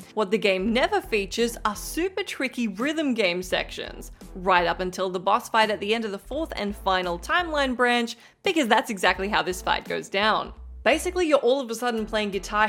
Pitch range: 195-280 Hz